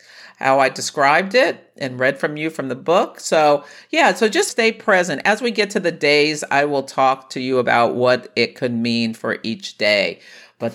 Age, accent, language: 50-69, American, English